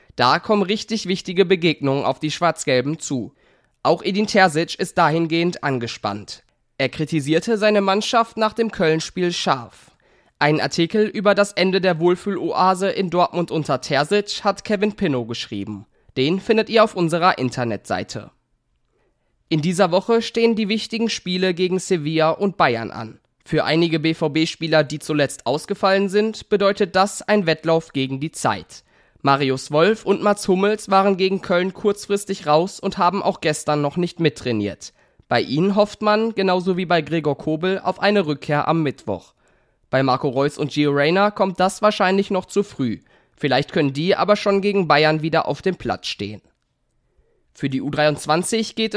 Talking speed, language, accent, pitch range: 160 wpm, German, German, 150-200 Hz